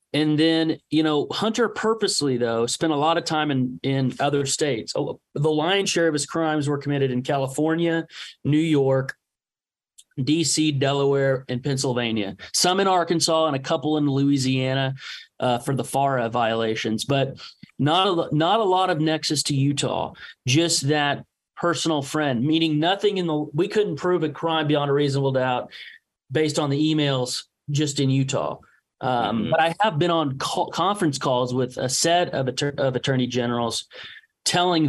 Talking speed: 165 wpm